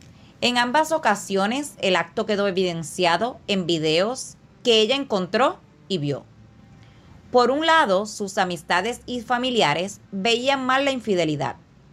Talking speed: 125 wpm